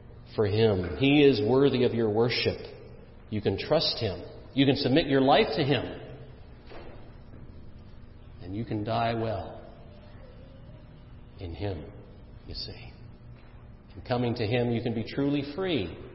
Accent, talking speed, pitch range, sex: American, 140 wpm, 105-130 Hz, male